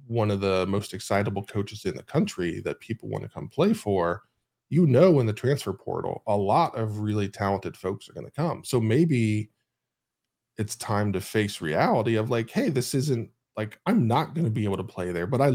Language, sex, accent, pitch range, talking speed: English, male, American, 105-130 Hz, 205 wpm